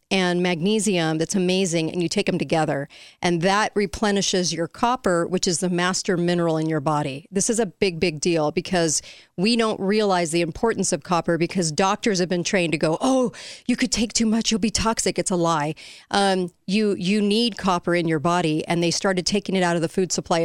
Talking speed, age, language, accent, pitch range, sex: 215 wpm, 40-59, English, American, 170-210 Hz, female